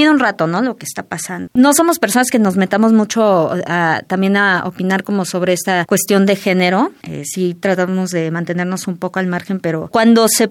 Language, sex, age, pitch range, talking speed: Spanish, female, 20-39, 180-225 Hz, 210 wpm